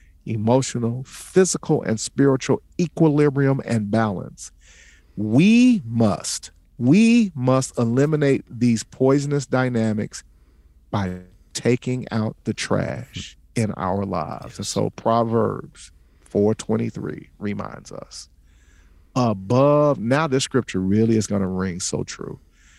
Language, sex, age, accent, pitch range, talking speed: English, male, 50-69, American, 95-125 Hz, 105 wpm